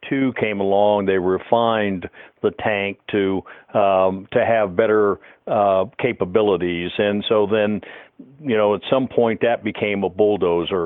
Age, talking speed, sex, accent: 50-69, 145 wpm, male, American